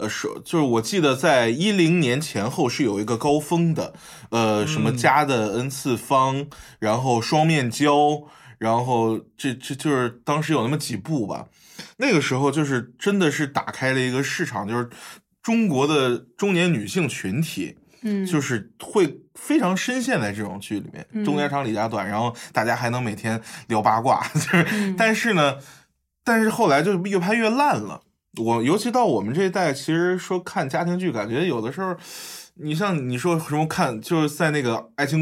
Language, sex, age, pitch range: Chinese, male, 20-39, 120-185 Hz